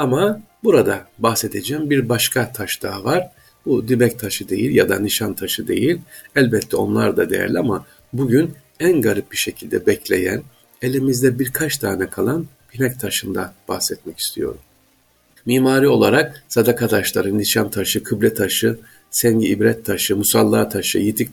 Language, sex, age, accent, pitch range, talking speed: Turkish, male, 50-69, native, 105-140 Hz, 140 wpm